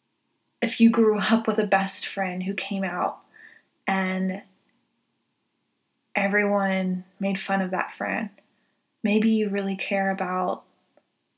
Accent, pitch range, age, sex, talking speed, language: American, 190-235 Hz, 20-39, female, 120 wpm, English